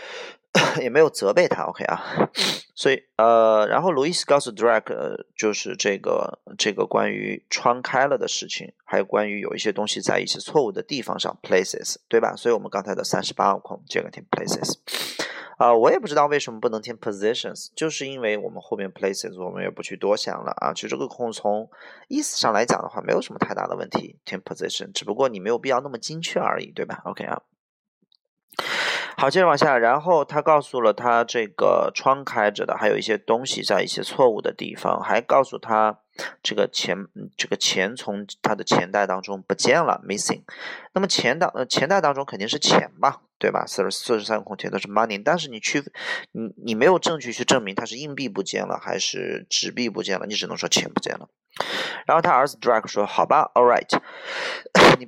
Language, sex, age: Chinese, male, 20-39